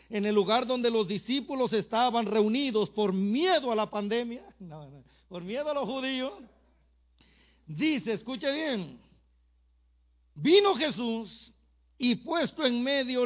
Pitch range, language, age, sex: 205-260 Hz, Spanish, 50-69, male